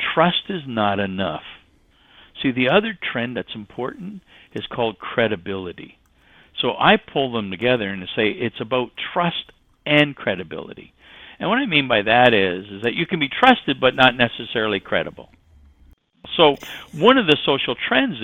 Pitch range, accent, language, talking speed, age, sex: 110-180 Hz, American, English, 160 wpm, 60-79, male